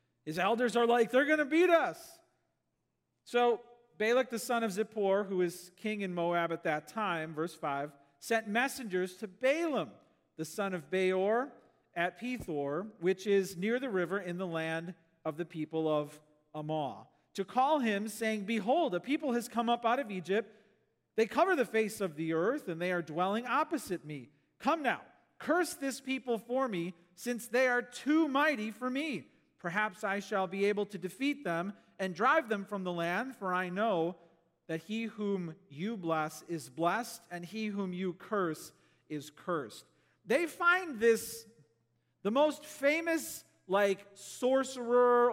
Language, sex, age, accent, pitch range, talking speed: English, male, 40-59, American, 170-235 Hz, 170 wpm